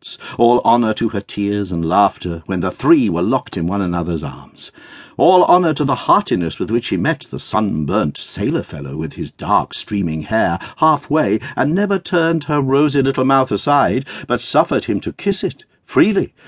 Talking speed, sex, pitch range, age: 180 wpm, male, 100-160 Hz, 60-79